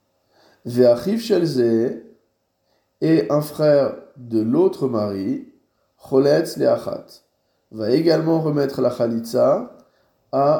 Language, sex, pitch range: French, male, 115-150 Hz